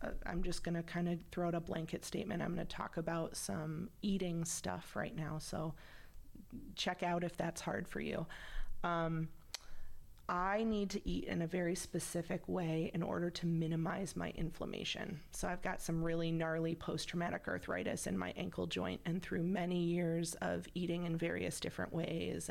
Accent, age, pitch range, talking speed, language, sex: American, 30-49, 160-180 Hz, 180 wpm, English, female